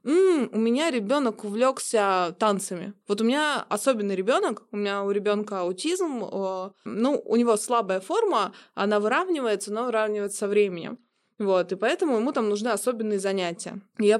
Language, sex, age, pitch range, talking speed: Russian, female, 20-39, 195-235 Hz, 150 wpm